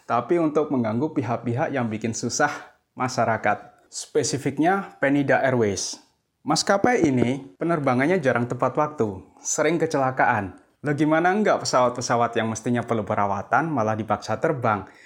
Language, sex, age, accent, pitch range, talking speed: Indonesian, male, 20-39, native, 115-145 Hz, 120 wpm